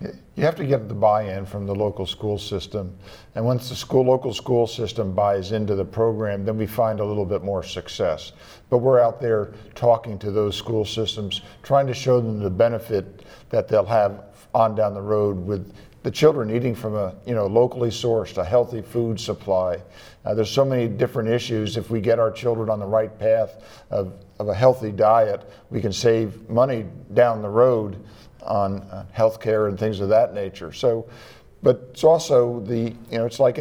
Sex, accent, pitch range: male, American, 100-120 Hz